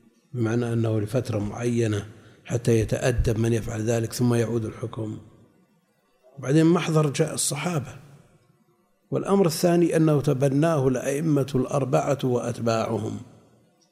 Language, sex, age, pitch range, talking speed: Arabic, male, 50-69, 115-150 Hz, 100 wpm